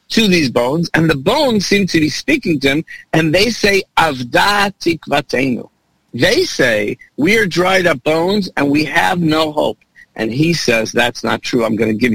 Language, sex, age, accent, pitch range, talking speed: English, male, 50-69, American, 125-175 Hz, 195 wpm